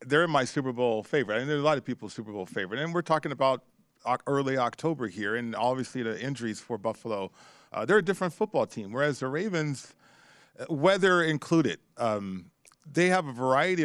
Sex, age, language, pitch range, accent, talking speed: male, 40-59, English, 115-140 Hz, American, 185 wpm